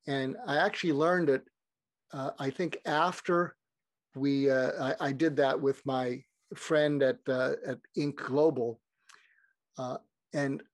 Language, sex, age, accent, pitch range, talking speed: English, male, 50-69, American, 135-180 Hz, 140 wpm